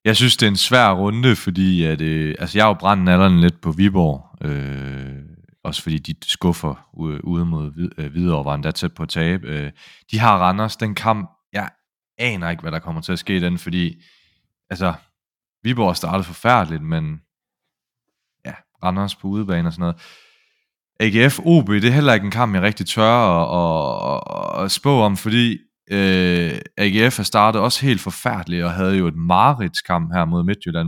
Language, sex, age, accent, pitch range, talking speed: Danish, male, 30-49, native, 85-105 Hz, 185 wpm